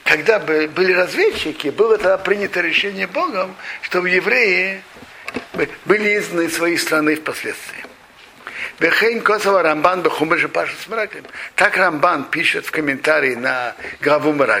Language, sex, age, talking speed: Russian, male, 50-69, 85 wpm